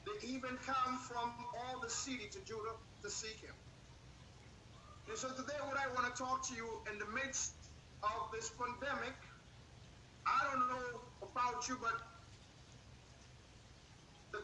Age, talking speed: 50-69, 145 wpm